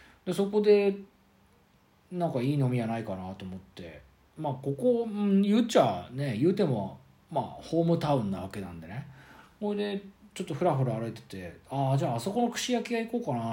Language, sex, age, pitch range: Japanese, male, 40-59, 100-165 Hz